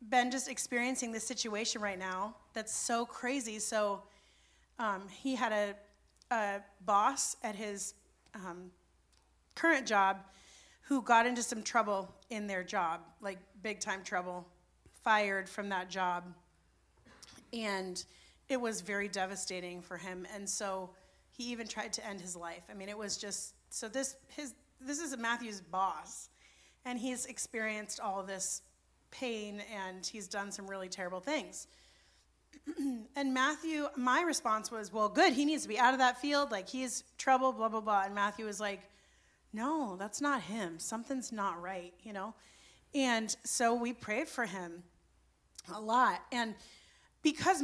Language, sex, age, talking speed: English, female, 30-49, 155 wpm